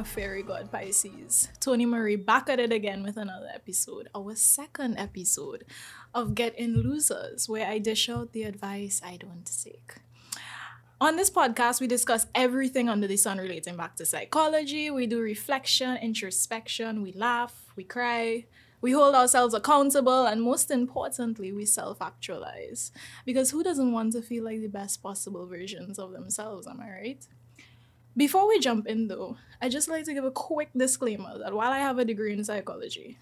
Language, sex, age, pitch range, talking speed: English, female, 10-29, 205-255 Hz, 170 wpm